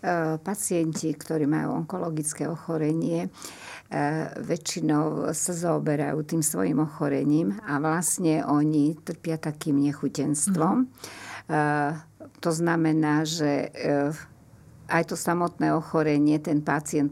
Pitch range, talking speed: 150-165 Hz, 90 wpm